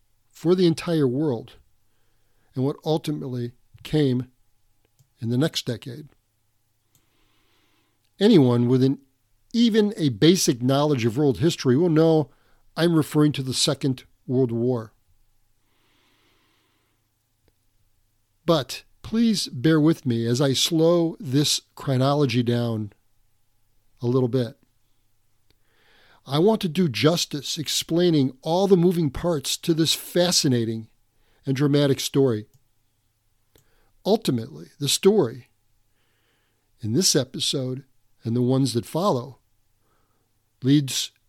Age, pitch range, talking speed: 50-69, 110-150 Hz, 105 wpm